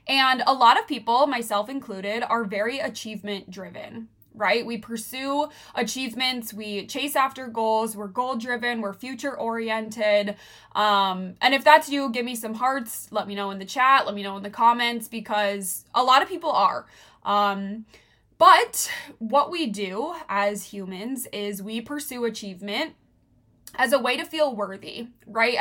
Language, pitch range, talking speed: English, 205-255 Hz, 155 wpm